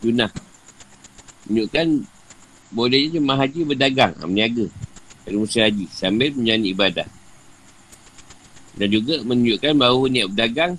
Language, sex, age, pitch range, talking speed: Malay, male, 50-69, 100-135 Hz, 100 wpm